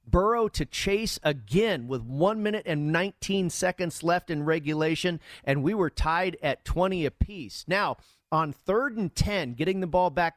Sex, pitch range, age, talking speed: male, 150-190 Hz, 40-59, 170 wpm